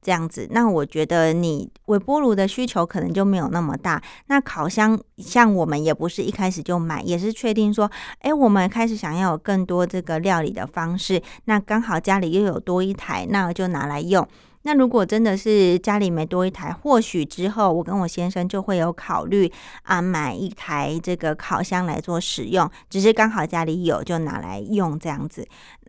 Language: Chinese